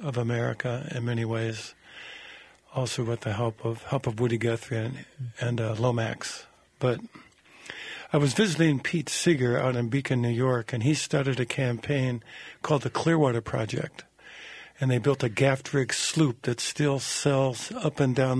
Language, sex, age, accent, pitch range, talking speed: English, male, 50-69, American, 120-140 Hz, 165 wpm